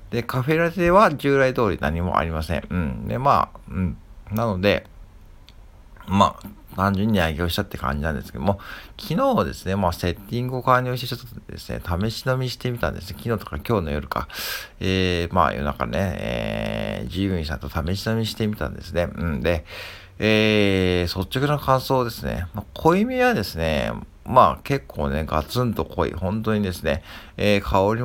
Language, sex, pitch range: Japanese, male, 85-115 Hz